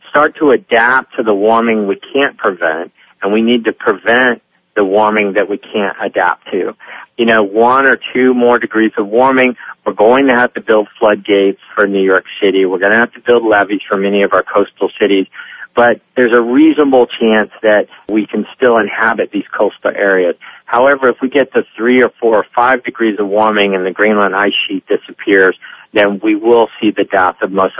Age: 50-69